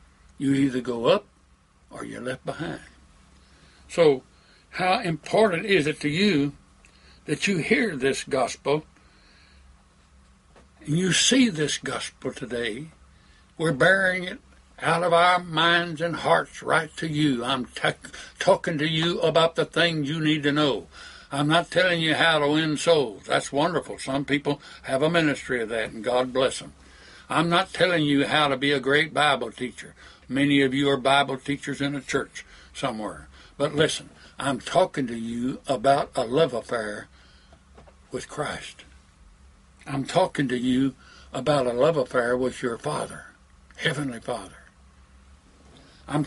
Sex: male